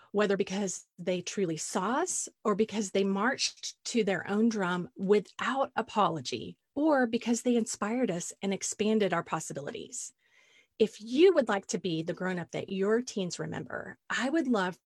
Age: 30-49